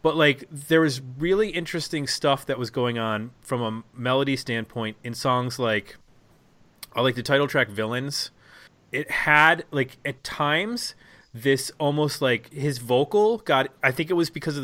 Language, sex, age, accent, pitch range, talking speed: English, male, 30-49, American, 120-155 Hz, 165 wpm